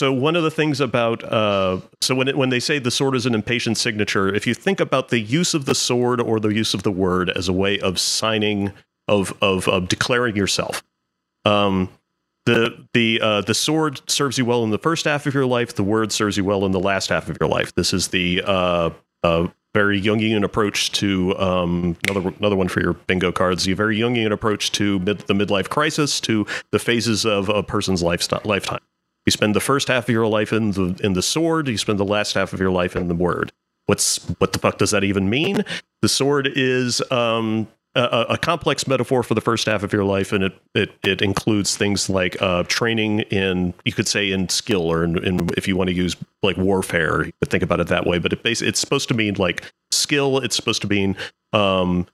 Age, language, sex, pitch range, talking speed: 30-49, English, male, 95-125 Hz, 230 wpm